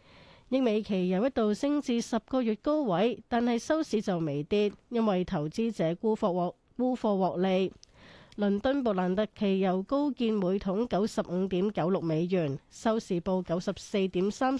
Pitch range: 180-235 Hz